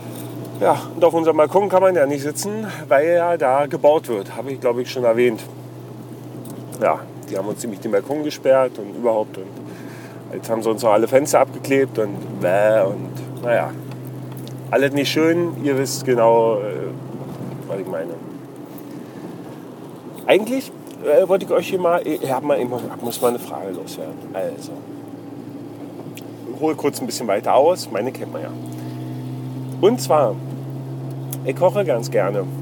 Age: 40-59